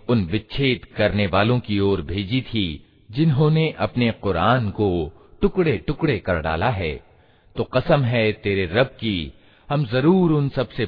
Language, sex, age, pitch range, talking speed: Hindi, male, 50-69, 95-125 Hz, 155 wpm